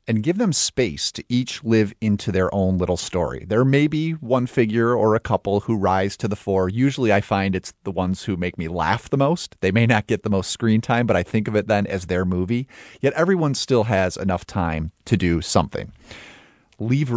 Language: English